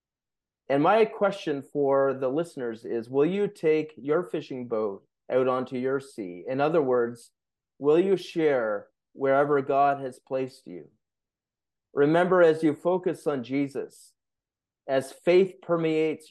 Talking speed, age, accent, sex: 135 wpm, 30-49, American, male